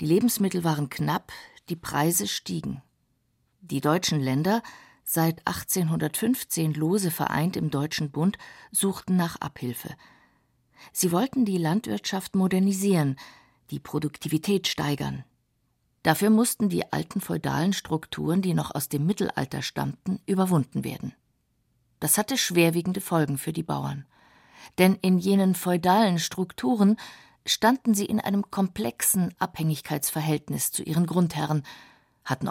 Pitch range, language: 155-200 Hz, German